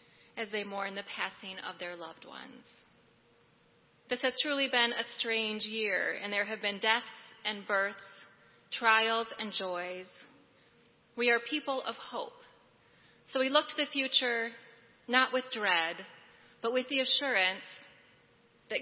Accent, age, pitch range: American, 30-49, 200-255 Hz